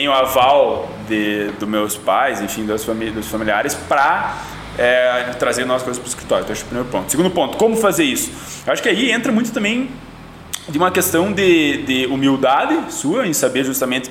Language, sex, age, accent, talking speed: Portuguese, male, 20-39, Brazilian, 190 wpm